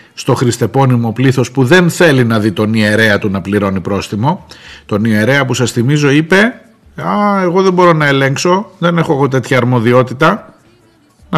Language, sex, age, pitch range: Greek, male, 50-69, 110-170 Hz